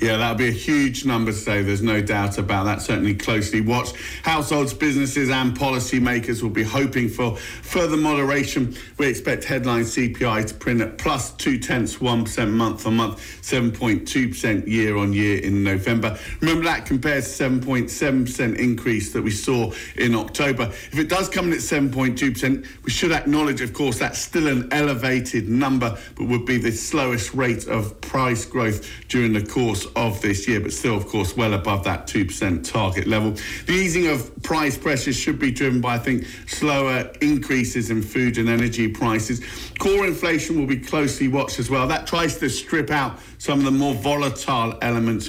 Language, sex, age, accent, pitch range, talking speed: English, male, 50-69, British, 110-135 Hz, 170 wpm